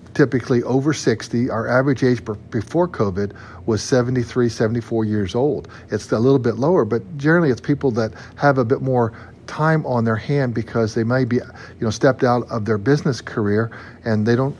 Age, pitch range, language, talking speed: 50-69, 110-130 Hz, English, 190 wpm